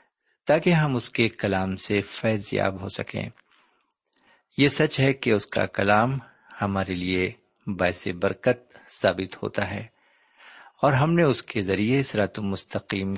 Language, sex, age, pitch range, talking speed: Urdu, male, 50-69, 100-130 Hz, 145 wpm